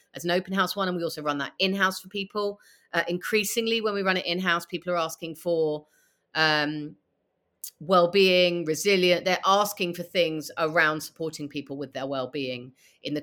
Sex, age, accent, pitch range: female, 30-49, British, 155-190 Hz